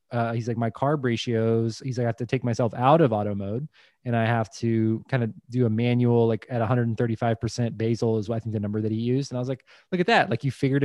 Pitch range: 115-135 Hz